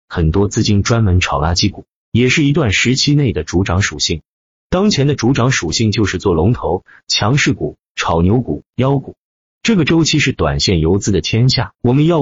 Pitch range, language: 90-120 Hz, Chinese